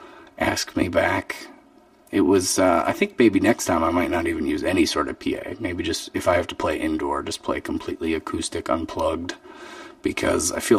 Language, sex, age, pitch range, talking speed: English, male, 30-49, 315-325 Hz, 200 wpm